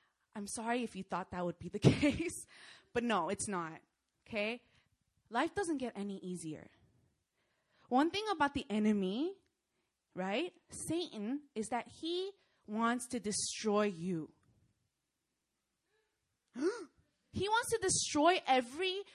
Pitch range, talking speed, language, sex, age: 185-285 Hz, 120 wpm, English, female, 20-39